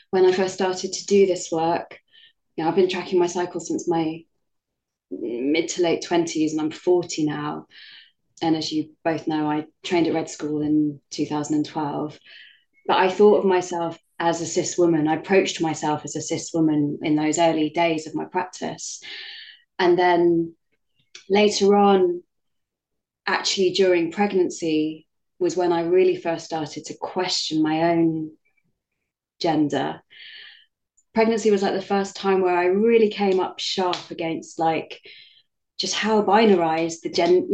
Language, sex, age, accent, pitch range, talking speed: English, female, 20-39, British, 165-200 Hz, 155 wpm